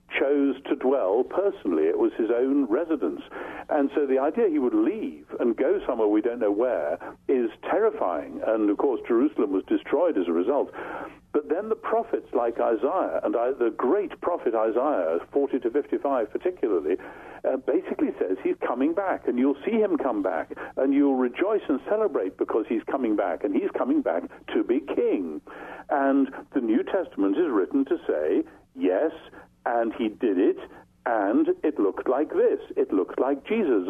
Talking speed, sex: 175 wpm, male